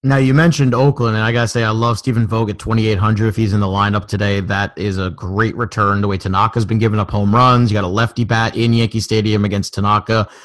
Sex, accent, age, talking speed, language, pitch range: male, American, 30-49, 255 wpm, English, 105-125 Hz